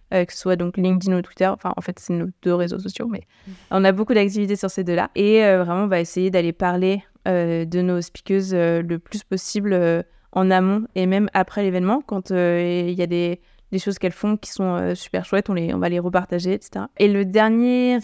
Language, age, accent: French, 20-39, French